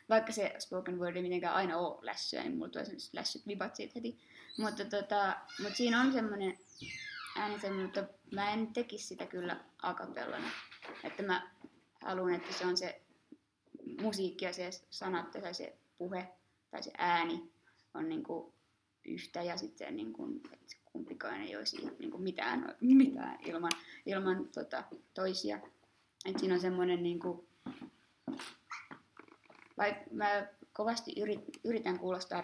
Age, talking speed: 20-39, 135 wpm